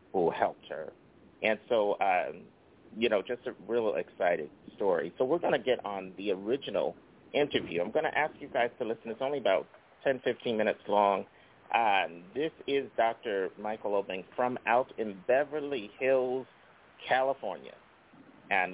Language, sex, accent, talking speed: English, male, American, 160 wpm